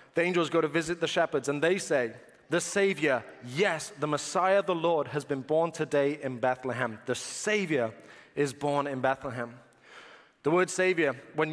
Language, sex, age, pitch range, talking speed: English, male, 30-49, 150-190 Hz, 170 wpm